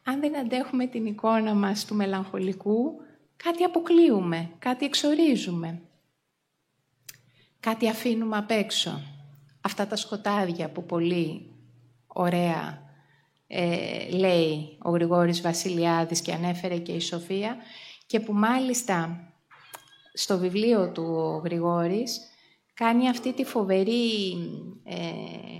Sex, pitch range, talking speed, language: female, 170-225 Hz, 105 wpm, Greek